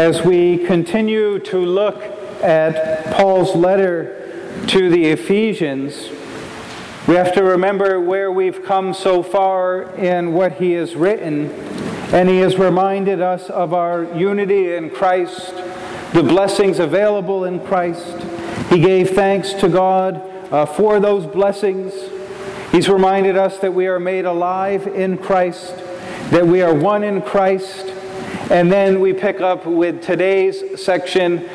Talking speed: 140 wpm